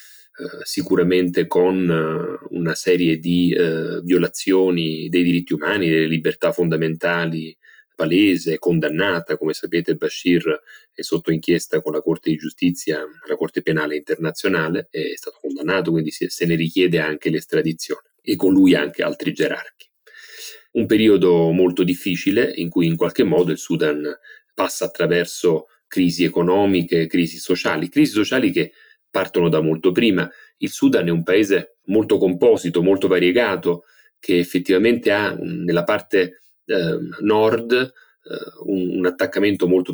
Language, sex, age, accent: Italian, male, 30-49, native